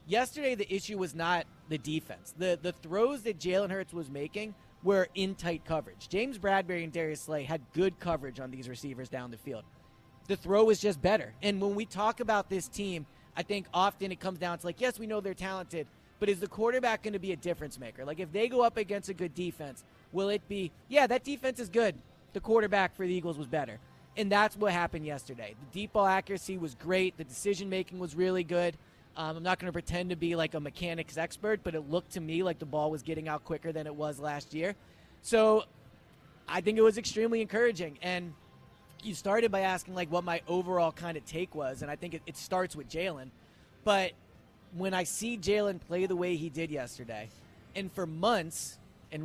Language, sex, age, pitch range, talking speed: English, male, 30-49, 160-200 Hz, 220 wpm